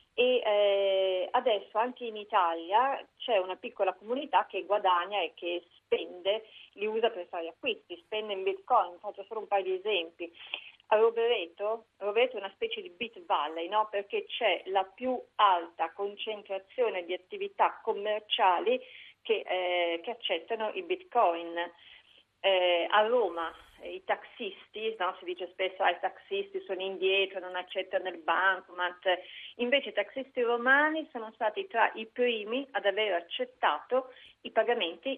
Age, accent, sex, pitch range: 40-59, native, female, 180-230 Hz